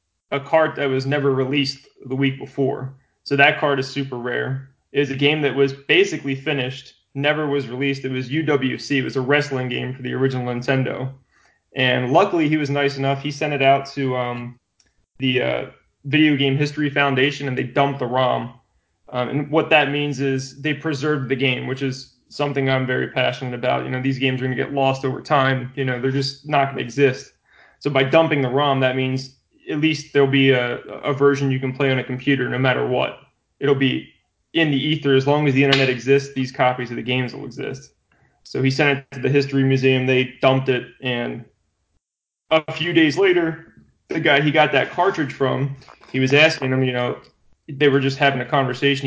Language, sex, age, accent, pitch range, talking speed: English, male, 20-39, American, 130-145 Hz, 210 wpm